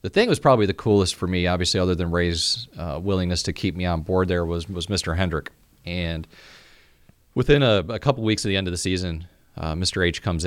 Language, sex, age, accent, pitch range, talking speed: English, male, 30-49, American, 85-100 Hz, 235 wpm